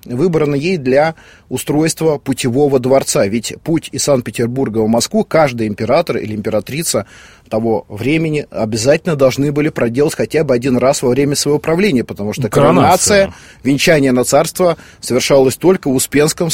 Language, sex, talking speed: Russian, male, 145 wpm